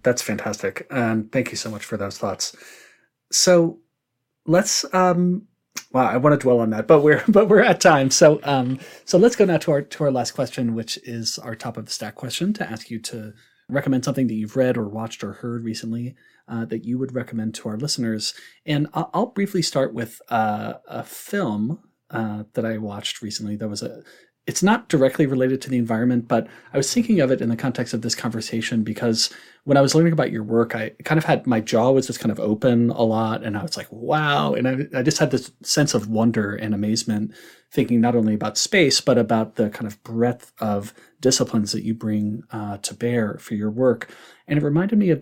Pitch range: 110-140 Hz